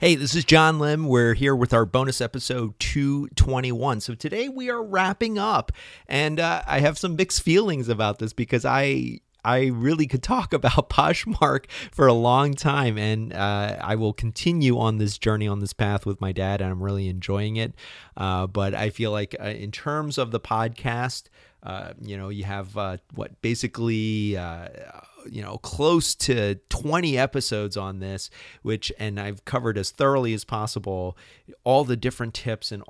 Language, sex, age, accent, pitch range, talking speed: English, male, 30-49, American, 100-125 Hz, 180 wpm